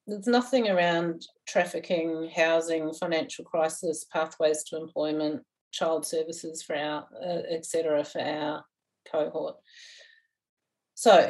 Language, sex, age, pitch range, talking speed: English, female, 40-59, 160-200 Hz, 100 wpm